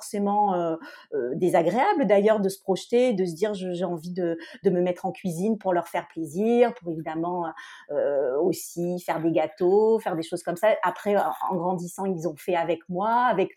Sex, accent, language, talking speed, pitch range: female, French, French, 200 wpm, 185-235 Hz